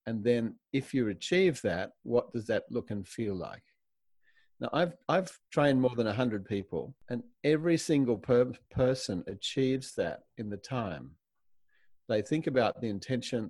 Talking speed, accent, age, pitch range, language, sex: 160 wpm, Australian, 50-69, 105-130 Hz, English, male